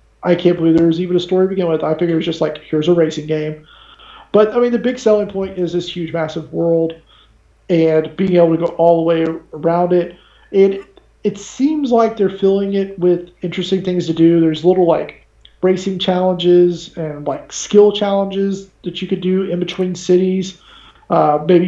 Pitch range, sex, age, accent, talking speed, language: 165-190 Hz, male, 40-59, American, 200 wpm, English